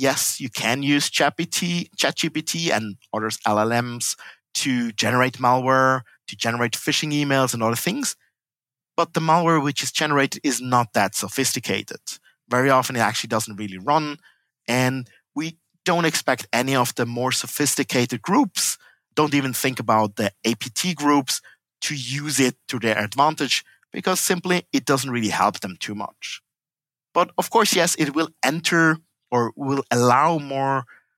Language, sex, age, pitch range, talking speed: English, male, 50-69, 125-165 Hz, 150 wpm